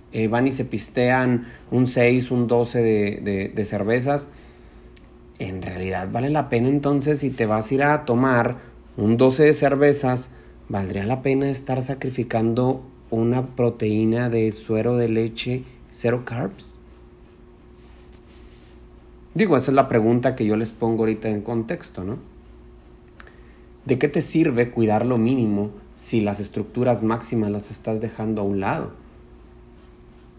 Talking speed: 140 wpm